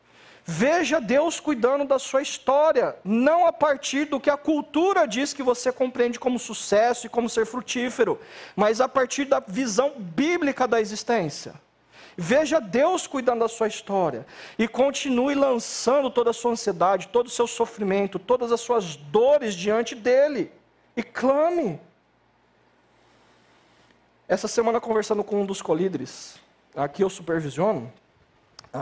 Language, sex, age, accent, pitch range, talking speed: Portuguese, male, 40-59, Brazilian, 160-250 Hz, 135 wpm